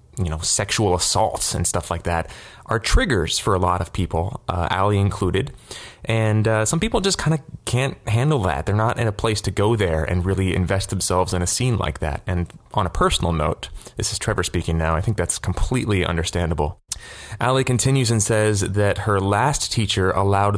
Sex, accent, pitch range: male, American, 90-115 Hz